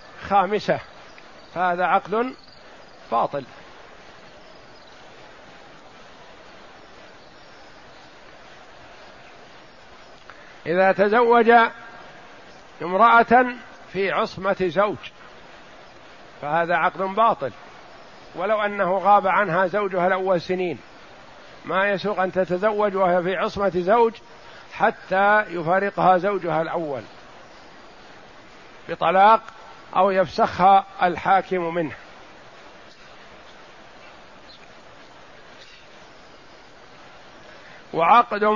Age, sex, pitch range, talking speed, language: 50-69, male, 180-210 Hz, 60 wpm, Arabic